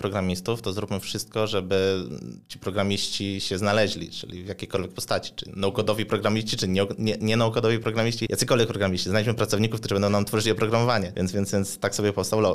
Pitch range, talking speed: 95-120 Hz, 170 wpm